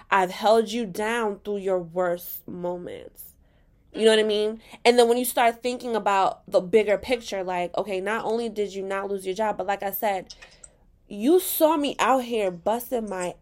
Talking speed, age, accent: 195 wpm, 20-39, American